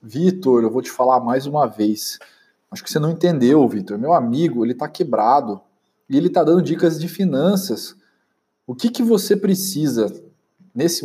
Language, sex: Portuguese, male